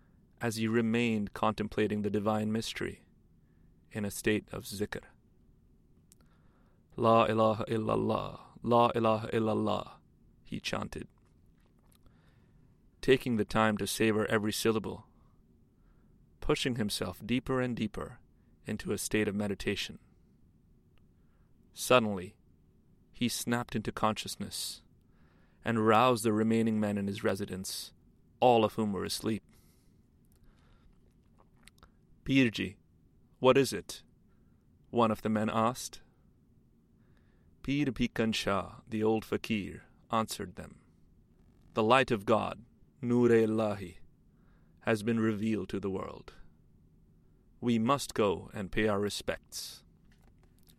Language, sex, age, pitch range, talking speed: English, male, 30-49, 95-115 Hz, 110 wpm